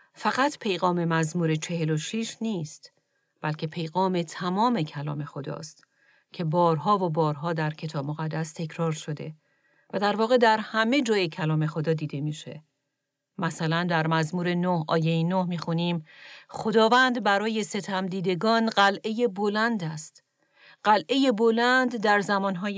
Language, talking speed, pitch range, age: Persian, 130 wpm, 160-200 Hz, 40-59